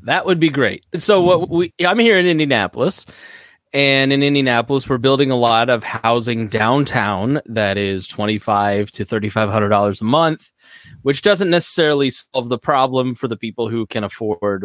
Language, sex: English, male